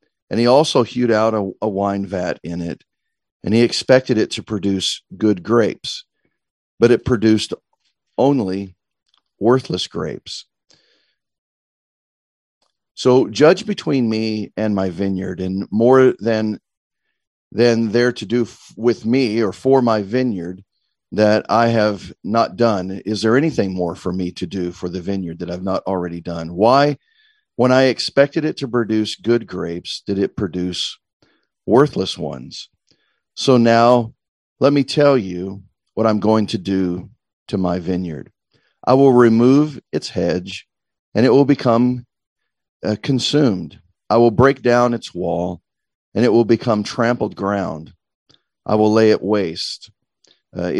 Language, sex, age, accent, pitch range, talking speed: English, male, 50-69, American, 95-120 Hz, 145 wpm